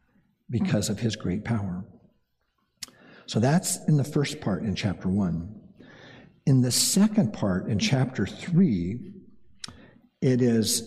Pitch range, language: 110-160 Hz, English